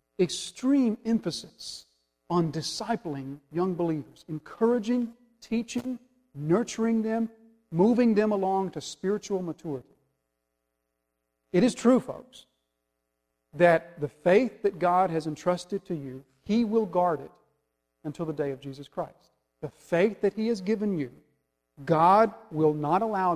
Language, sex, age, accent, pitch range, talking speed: English, male, 50-69, American, 145-210 Hz, 130 wpm